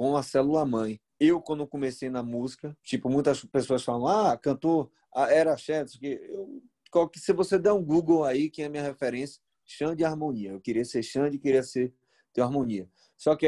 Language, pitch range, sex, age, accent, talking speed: Portuguese, 125-155 Hz, male, 30-49, Brazilian, 195 wpm